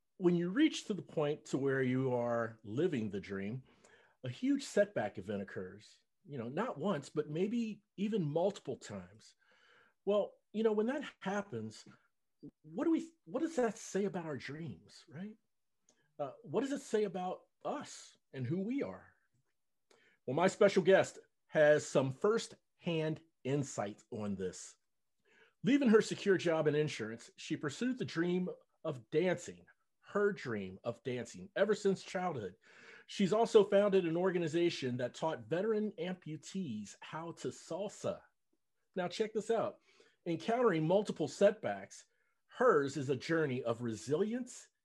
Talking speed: 145 wpm